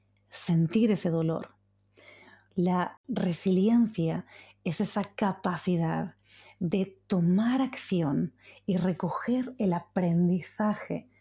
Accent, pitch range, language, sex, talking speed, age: Spanish, 165-195 Hz, Spanish, female, 80 wpm, 30-49